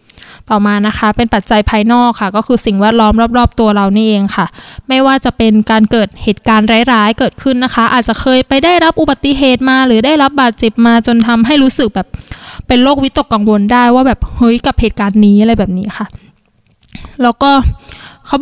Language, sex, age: Thai, female, 20-39